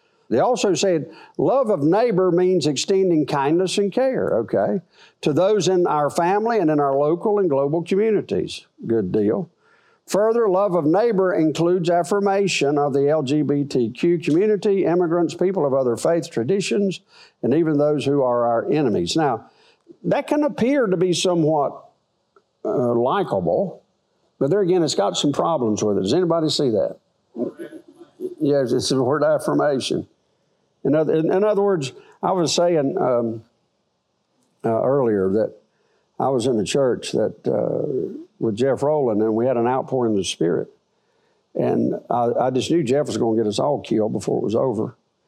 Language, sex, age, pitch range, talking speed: English, male, 50-69, 135-200 Hz, 165 wpm